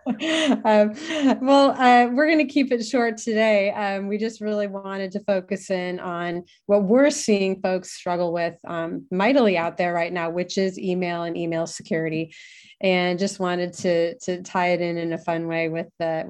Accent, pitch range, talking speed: American, 165-200 Hz, 190 wpm